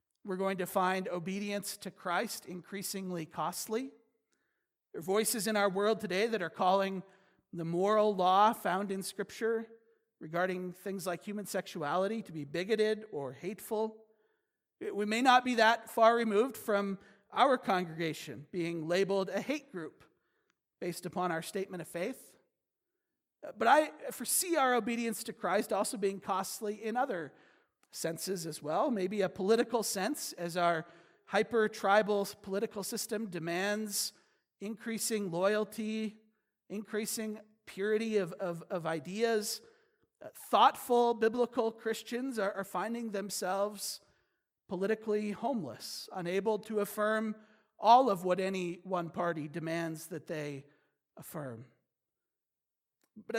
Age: 40-59